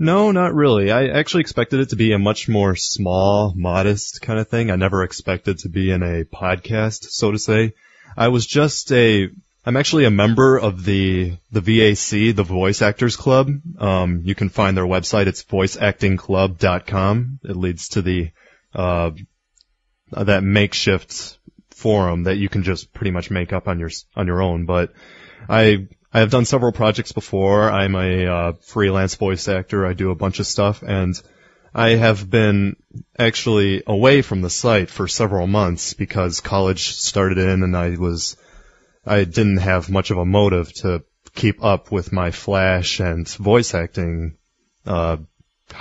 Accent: American